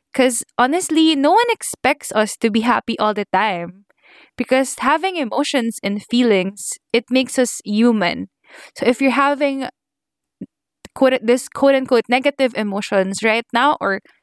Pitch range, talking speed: 215-270 Hz, 145 wpm